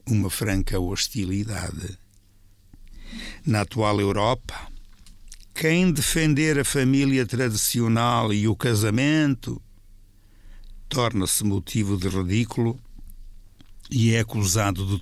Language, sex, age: Portuguese, male, 60-79